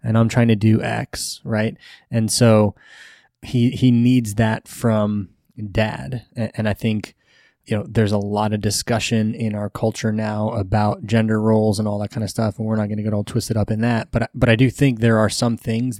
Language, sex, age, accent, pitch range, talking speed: English, male, 20-39, American, 105-120 Hz, 220 wpm